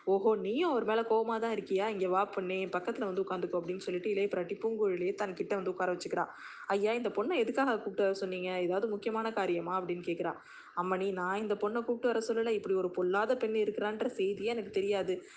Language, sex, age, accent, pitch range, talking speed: Tamil, female, 20-39, native, 190-230 Hz, 180 wpm